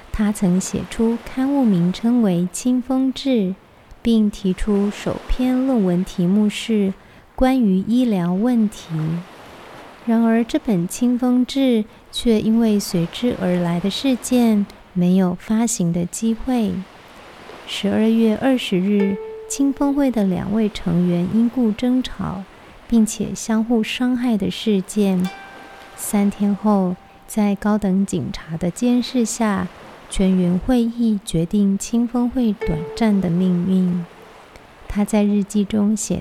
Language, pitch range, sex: Chinese, 185-235 Hz, female